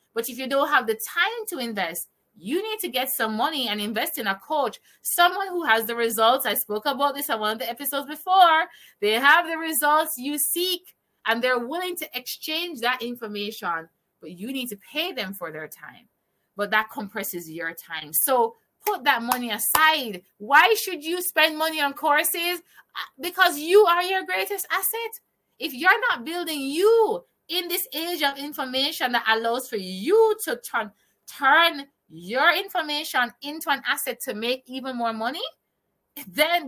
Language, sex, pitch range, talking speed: English, female, 225-340 Hz, 175 wpm